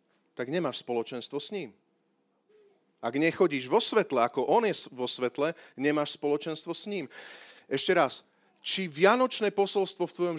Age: 40-59